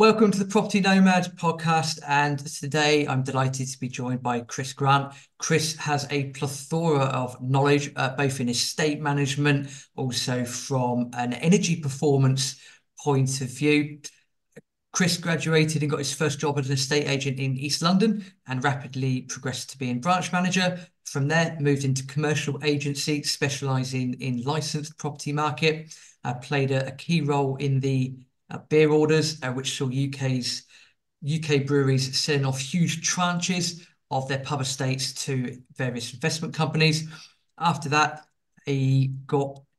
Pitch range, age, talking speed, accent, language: 130-155 Hz, 40-59, 150 wpm, British, English